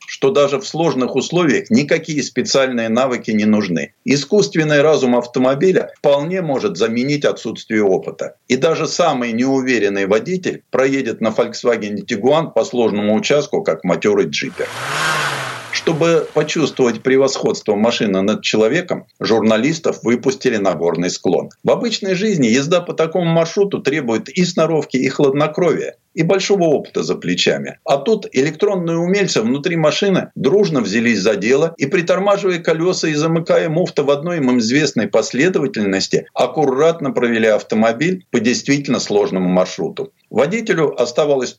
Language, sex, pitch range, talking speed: Russian, male, 125-180 Hz, 130 wpm